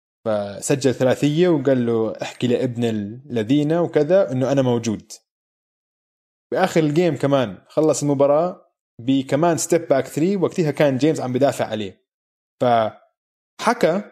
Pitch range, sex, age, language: 120-155 Hz, male, 20-39, Arabic